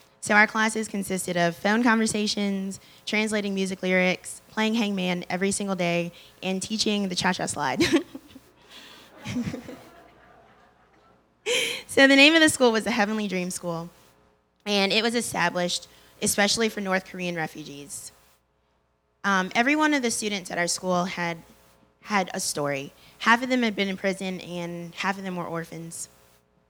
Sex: female